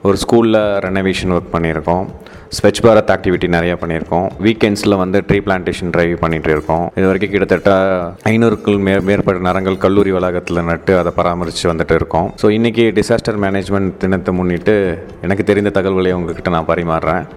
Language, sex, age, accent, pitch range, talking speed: Tamil, male, 30-49, native, 90-110 Hz, 140 wpm